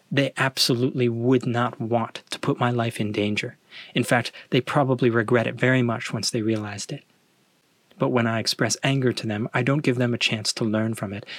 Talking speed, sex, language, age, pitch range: 210 wpm, male, English, 30-49, 110-130 Hz